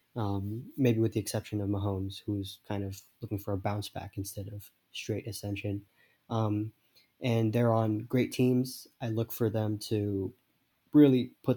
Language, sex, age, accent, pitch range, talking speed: English, male, 20-39, American, 105-125 Hz, 165 wpm